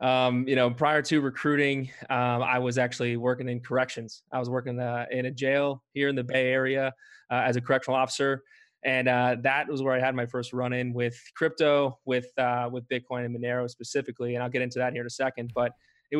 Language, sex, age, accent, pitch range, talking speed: English, male, 20-39, American, 125-135 Hz, 225 wpm